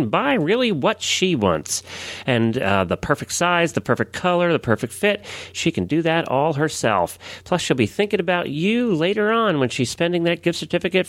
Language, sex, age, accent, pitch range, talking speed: English, male, 40-59, American, 105-170 Hz, 195 wpm